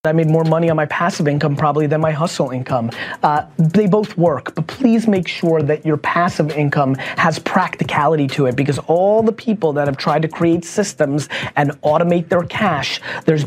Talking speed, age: 195 wpm, 30-49